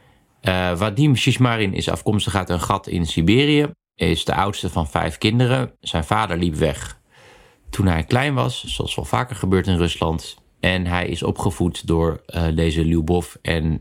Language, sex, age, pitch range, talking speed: Dutch, male, 50-69, 85-110 Hz, 175 wpm